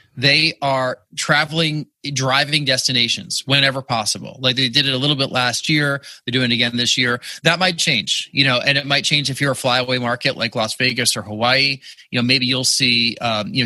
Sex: male